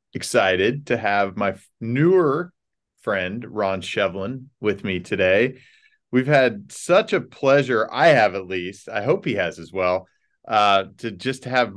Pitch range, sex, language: 95-125 Hz, male, English